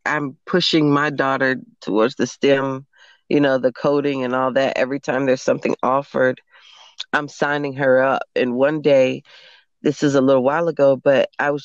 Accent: American